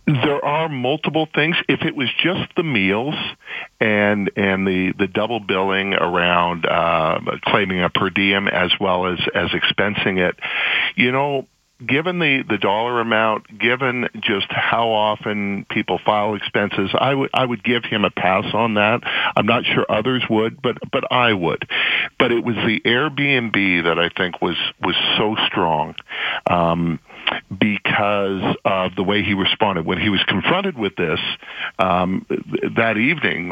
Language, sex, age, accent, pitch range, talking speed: English, male, 50-69, American, 95-120 Hz, 160 wpm